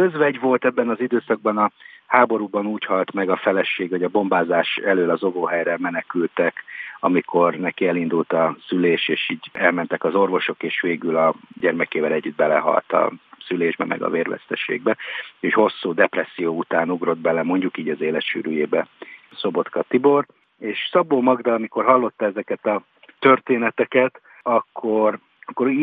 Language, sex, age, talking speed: Hungarian, male, 50-69, 145 wpm